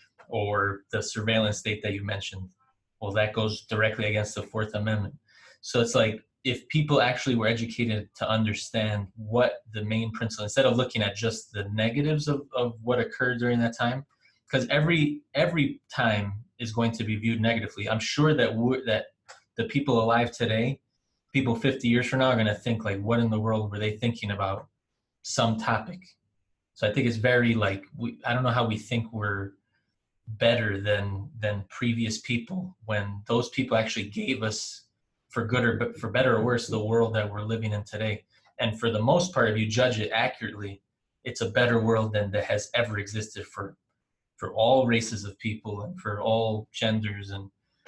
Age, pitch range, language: 20-39, 105-120 Hz, English